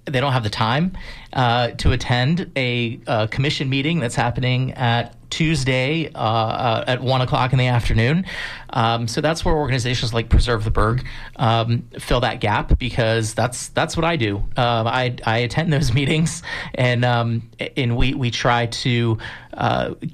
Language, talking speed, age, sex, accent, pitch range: English, 170 wpm, 40-59, male, American, 115-145 Hz